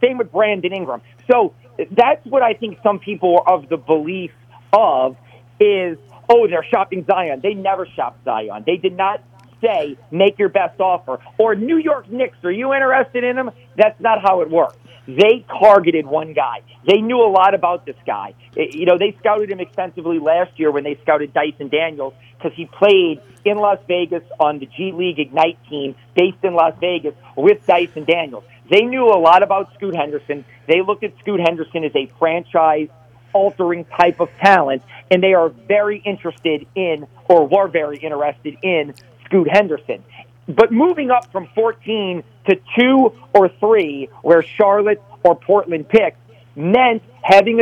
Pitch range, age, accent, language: 150-205 Hz, 40-59, American, English